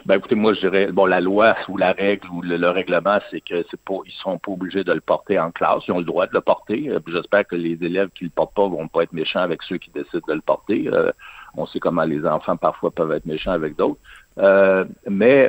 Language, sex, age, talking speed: French, male, 60-79, 265 wpm